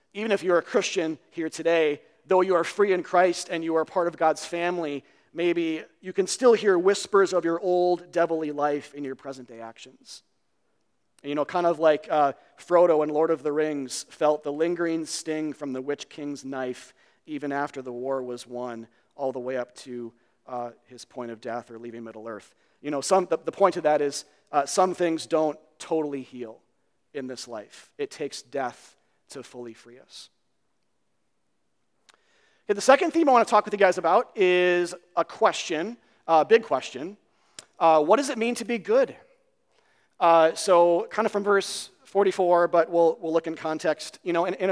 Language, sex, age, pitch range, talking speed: English, male, 40-59, 145-185 Hz, 195 wpm